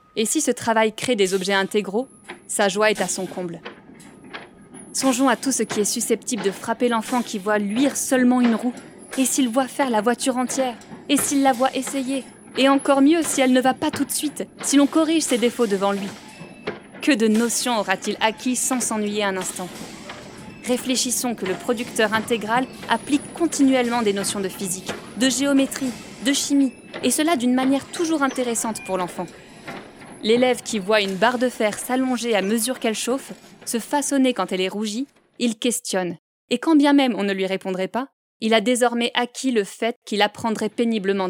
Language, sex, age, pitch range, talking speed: French, female, 20-39, 205-255 Hz, 190 wpm